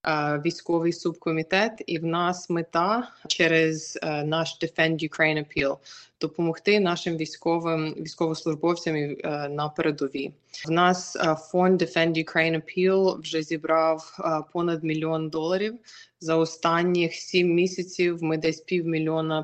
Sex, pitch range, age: female, 155-175 Hz, 20-39